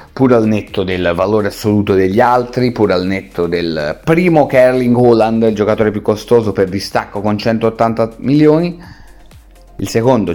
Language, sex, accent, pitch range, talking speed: Italian, male, native, 100-130 Hz, 150 wpm